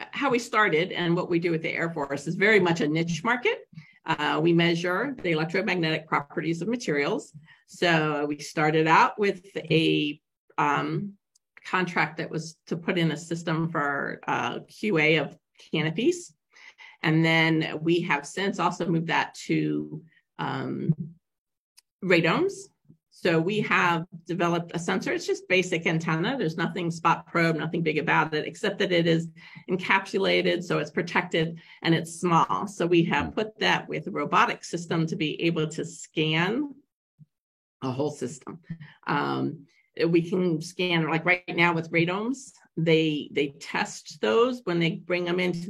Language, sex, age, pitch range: English, female, 40-59, 160-185 Hz